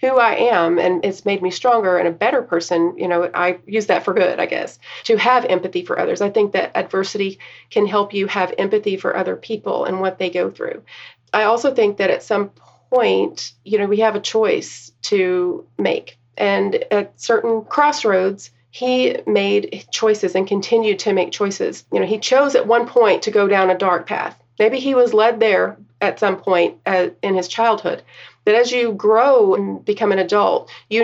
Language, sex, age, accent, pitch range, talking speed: English, female, 40-59, American, 185-225 Hz, 200 wpm